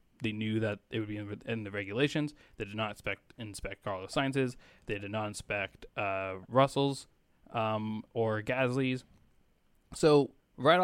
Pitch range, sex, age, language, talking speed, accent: 110-135 Hz, male, 20-39, English, 150 wpm, American